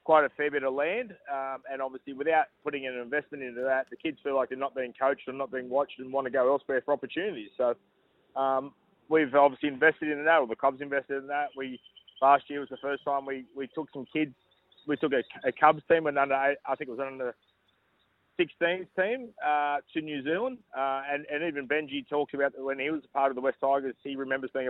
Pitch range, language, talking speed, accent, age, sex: 135-150 Hz, English, 240 wpm, Australian, 20-39, male